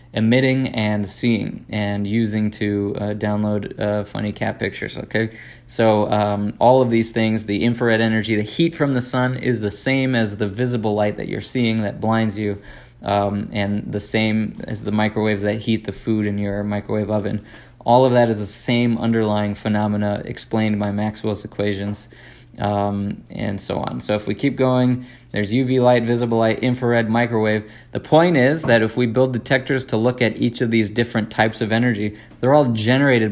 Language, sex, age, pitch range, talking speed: English, male, 20-39, 105-120 Hz, 190 wpm